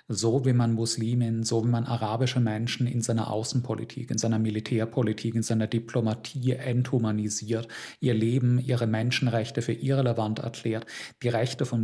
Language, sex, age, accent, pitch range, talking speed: German, male, 40-59, German, 110-120 Hz, 145 wpm